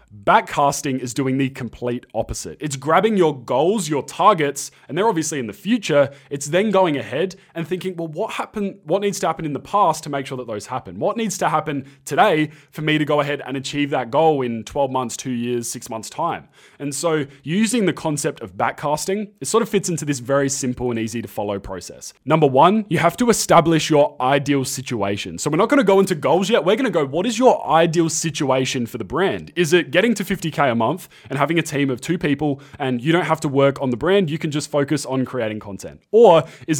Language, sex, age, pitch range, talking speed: English, male, 20-39, 130-170 Hz, 235 wpm